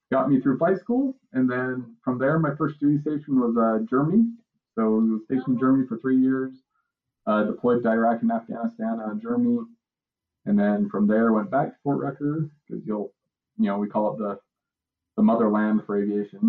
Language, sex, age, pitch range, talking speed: English, male, 20-39, 110-150 Hz, 195 wpm